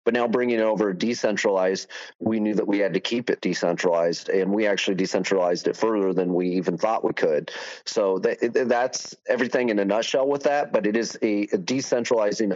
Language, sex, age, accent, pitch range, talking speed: English, male, 30-49, American, 100-125 Hz, 200 wpm